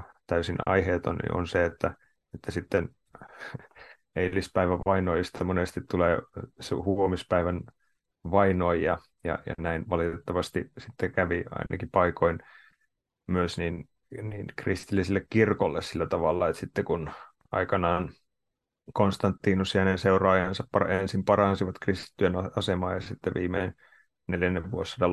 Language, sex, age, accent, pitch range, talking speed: Finnish, male, 30-49, native, 90-100 Hz, 115 wpm